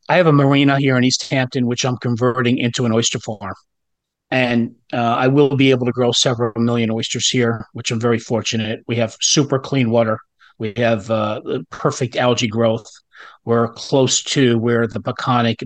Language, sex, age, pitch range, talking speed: English, male, 40-59, 120-145 Hz, 185 wpm